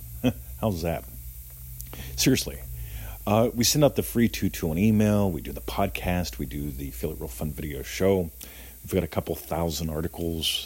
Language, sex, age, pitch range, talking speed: English, male, 40-59, 75-100 Hz, 165 wpm